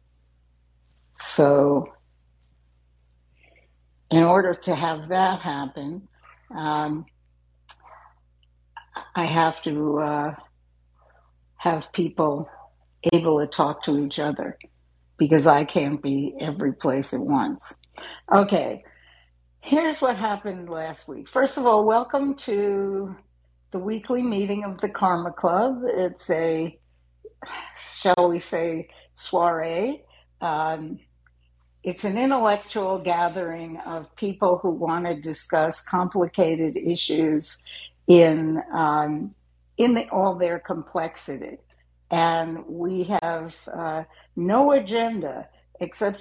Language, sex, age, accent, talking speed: English, female, 60-79, American, 105 wpm